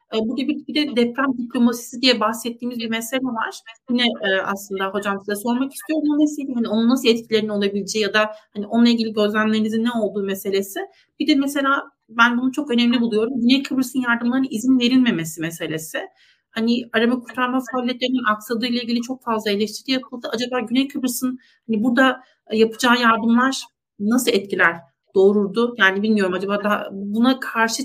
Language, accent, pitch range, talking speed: Turkish, native, 215-260 Hz, 155 wpm